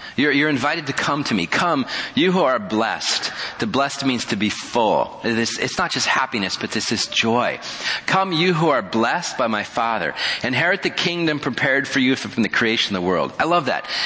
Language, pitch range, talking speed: English, 100-145 Hz, 220 wpm